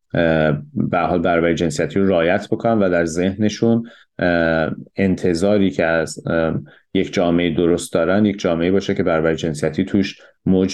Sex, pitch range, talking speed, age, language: male, 85-105 Hz, 140 wpm, 30-49, Persian